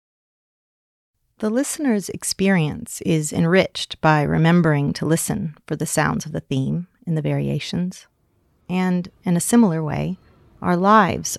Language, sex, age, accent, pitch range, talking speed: English, female, 40-59, American, 155-195 Hz, 130 wpm